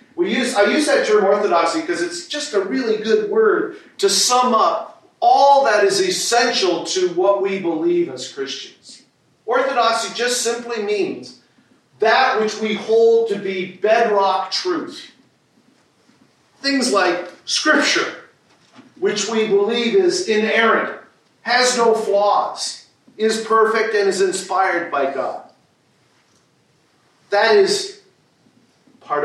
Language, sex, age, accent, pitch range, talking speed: English, male, 50-69, American, 190-285 Hz, 120 wpm